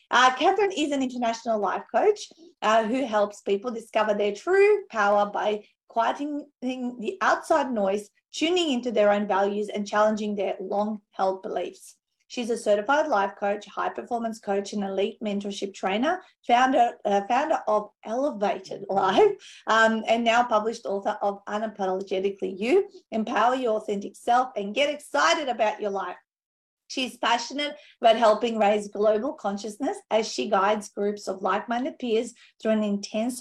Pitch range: 205-255 Hz